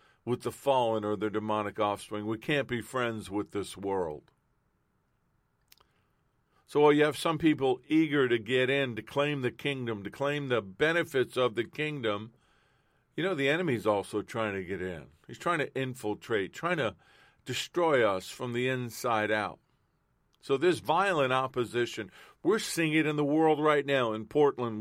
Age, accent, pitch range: 50-69, American, 105-135 Hz